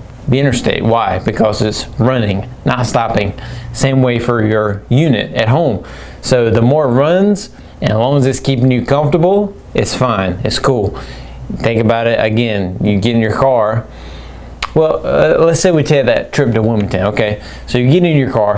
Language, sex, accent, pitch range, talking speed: English, male, American, 110-135 Hz, 185 wpm